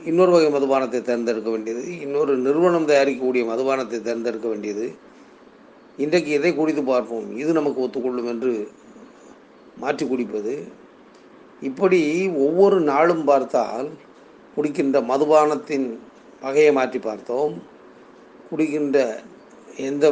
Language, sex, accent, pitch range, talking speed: Tamil, male, native, 130-160 Hz, 95 wpm